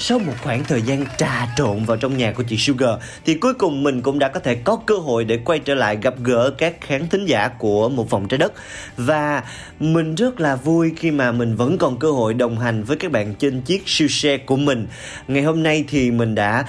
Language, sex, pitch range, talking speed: Vietnamese, male, 120-160 Hz, 245 wpm